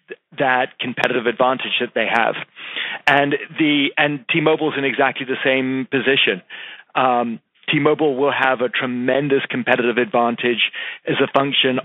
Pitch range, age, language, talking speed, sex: 120-140 Hz, 40-59, English, 135 wpm, male